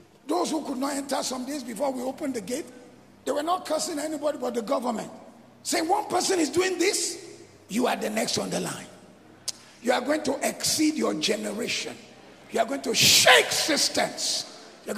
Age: 50-69